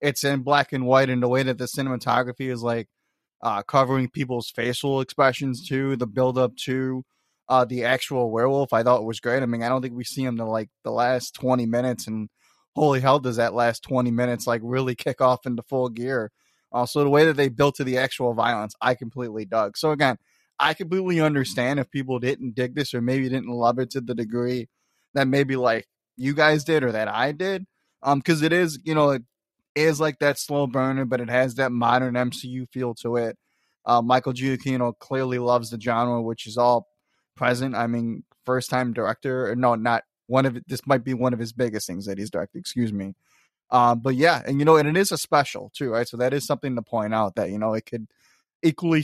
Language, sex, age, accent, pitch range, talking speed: English, male, 20-39, American, 120-135 Hz, 220 wpm